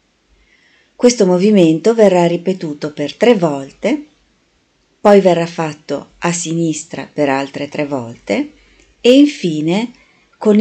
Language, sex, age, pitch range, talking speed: Italian, female, 40-59, 165-205 Hz, 105 wpm